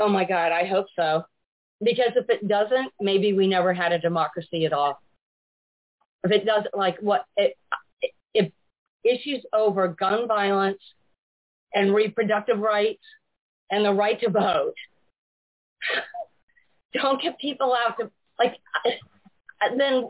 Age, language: 40-59, English